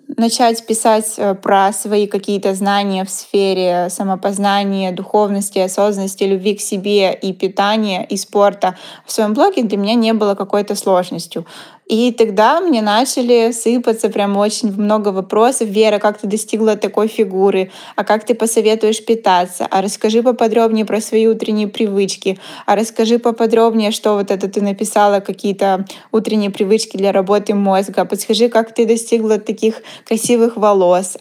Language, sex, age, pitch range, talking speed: Russian, female, 20-39, 200-225 Hz, 145 wpm